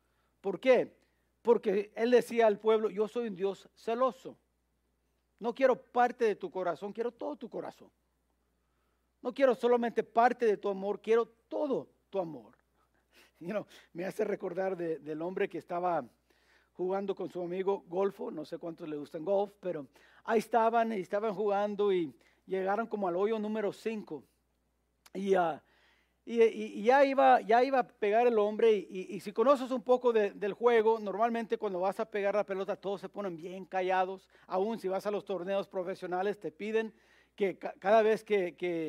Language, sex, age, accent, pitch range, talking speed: English, male, 50-69, Mexican, 185-225 Hz, 180 wpm